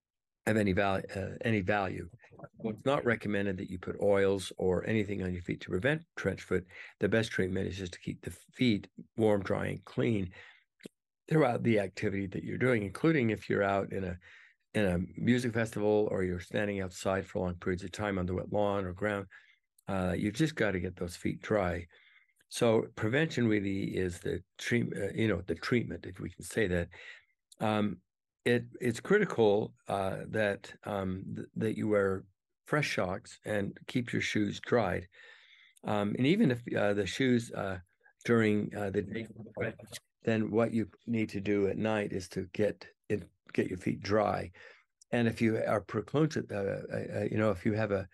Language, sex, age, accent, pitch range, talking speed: English, male, 60-79, American, 95-110 Hz, 190 wpm